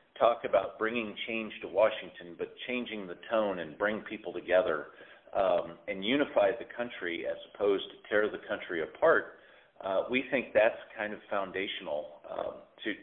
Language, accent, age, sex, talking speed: English, American, 40-59, male, 155 wpm